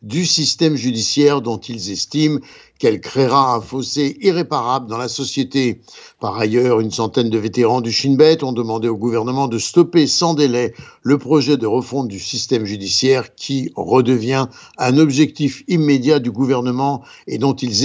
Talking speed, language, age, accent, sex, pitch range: 160 wpm, French, 60-79, French, male, 120-155 Hz